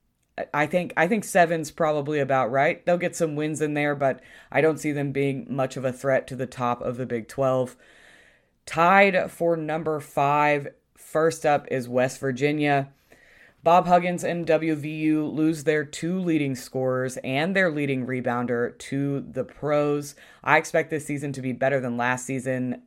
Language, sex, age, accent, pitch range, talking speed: English, female, 20-39, American, 130-150 Hz, 175 wpm